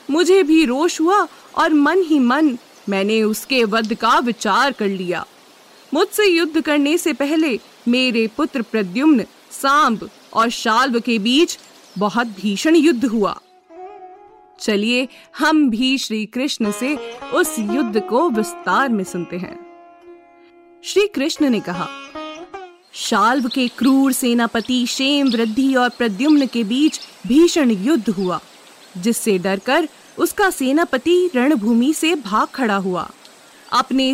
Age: 20-39